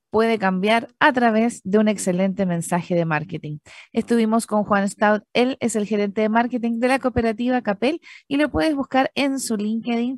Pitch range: 195-270 Hz